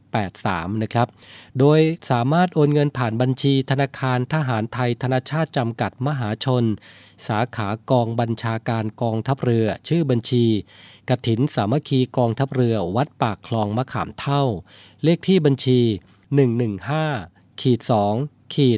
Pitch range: 110-145 Hz